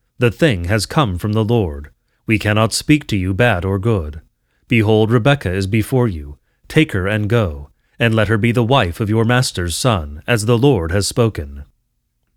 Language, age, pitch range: English, 30-49, 95-120 Hz